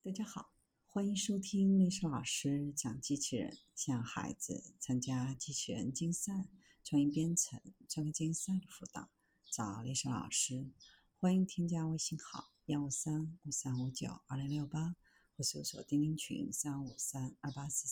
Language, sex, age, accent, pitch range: Chinese, female, 50-69, native, 135-195 Hz